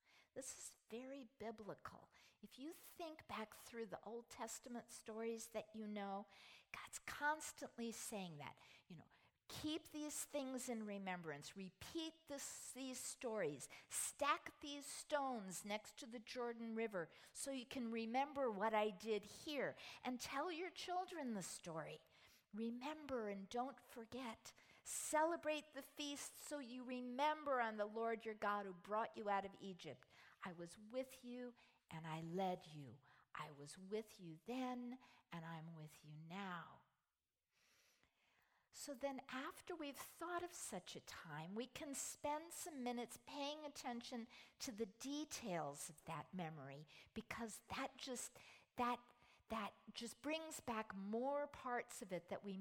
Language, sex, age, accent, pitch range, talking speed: English, female, 50-69, American, 200-275 Hz, 145 wpm